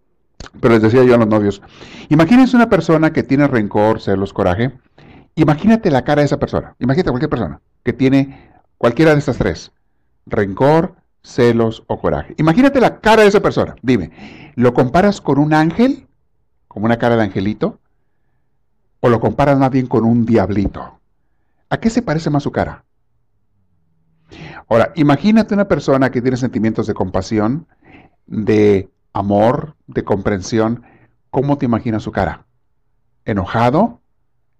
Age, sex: 60-79, male